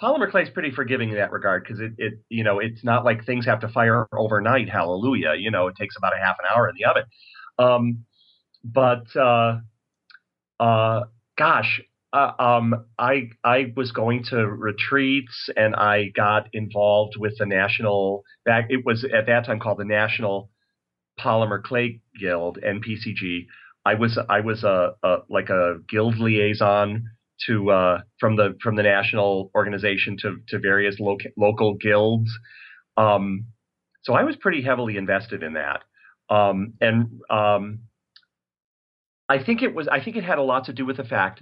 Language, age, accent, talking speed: English, 40-59, American, 170 wpm